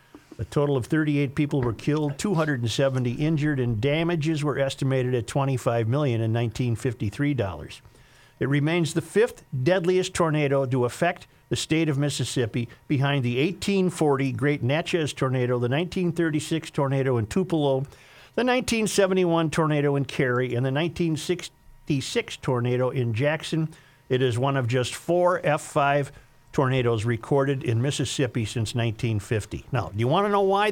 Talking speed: 145 wpm